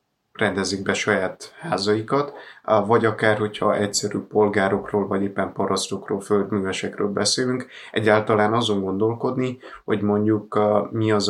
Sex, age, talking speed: male, 30-49, 110 wpm